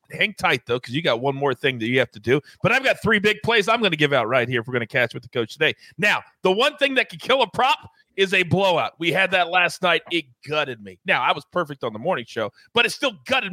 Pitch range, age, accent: 160-225 Hz, 40-59, American